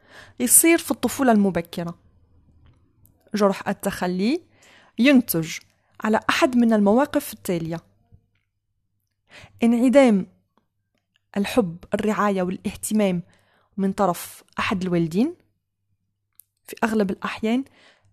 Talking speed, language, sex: 75 wpm, Arabic, female